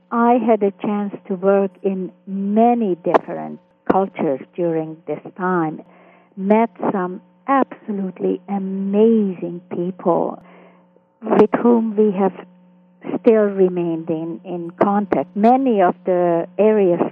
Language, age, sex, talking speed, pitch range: English, 50-69, female, 110 wpm, 180-210 Hz